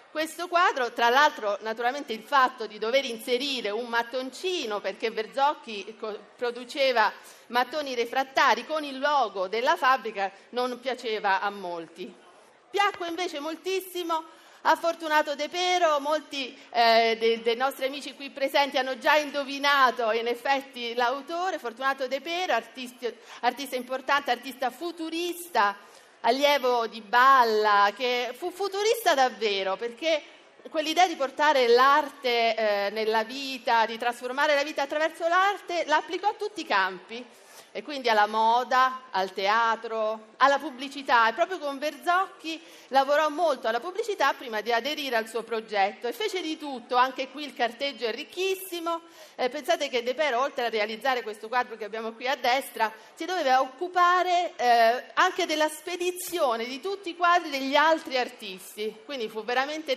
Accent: native